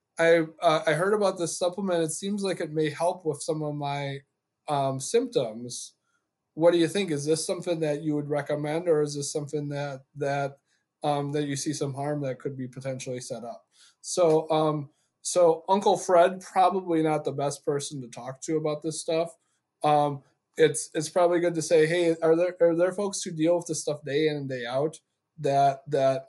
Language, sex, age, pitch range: English, male, 20-39, 140-165 Hz